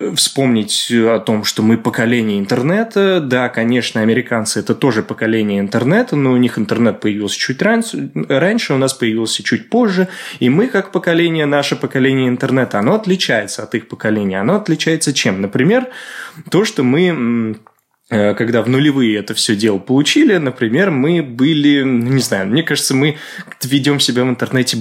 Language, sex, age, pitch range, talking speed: Russian, male, 20-39, 110-150 Hz, 155 wpm